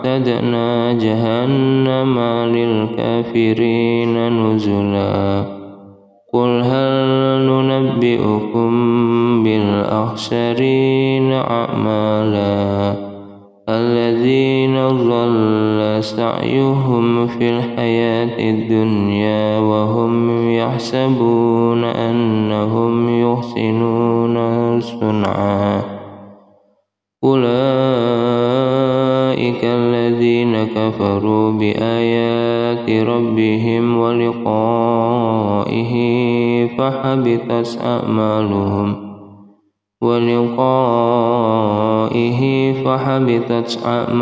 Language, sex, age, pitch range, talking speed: Indonesian, male, 20-39, 110-120 Hz, 35 wpm